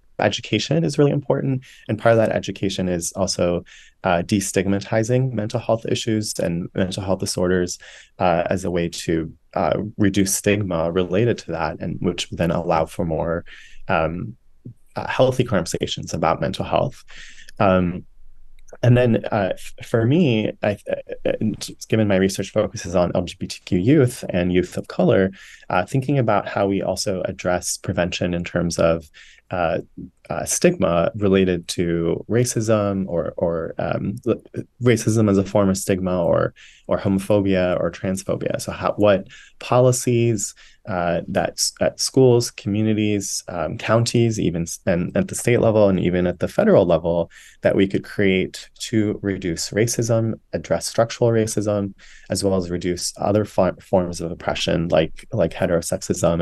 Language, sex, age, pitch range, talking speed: English, male, 20-39, 90-115 Hz, 150 wpm